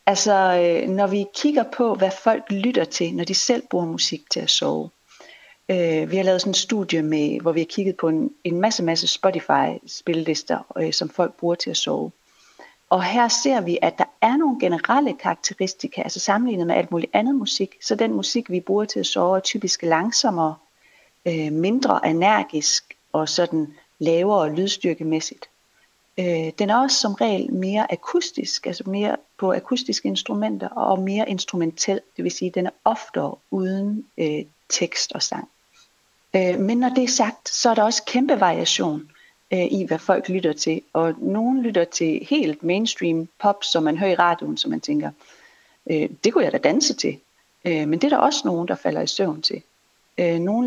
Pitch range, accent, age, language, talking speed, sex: 165-225 Hz, native, 40-59, Danish, 185 wpm, female